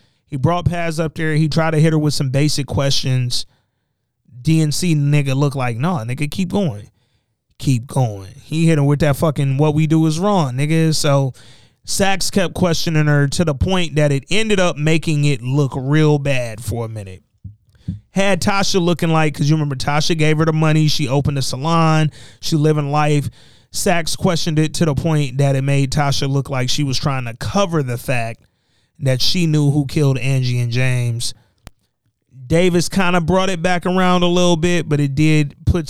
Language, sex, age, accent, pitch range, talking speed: English, male, 30-49, American, 130-165 Hz, 195 wpm